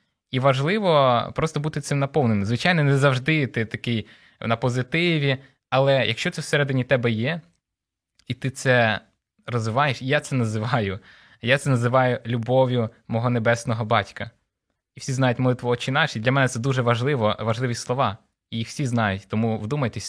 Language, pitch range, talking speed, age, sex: Ukrainian, 115-140 Hz, 160 wpm, 20-39, male